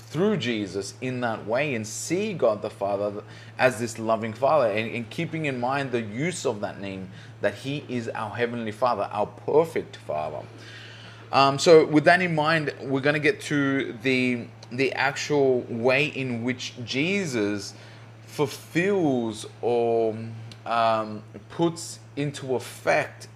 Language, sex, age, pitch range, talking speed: English, male, 20-39, 110-140 Hz, 145 wpm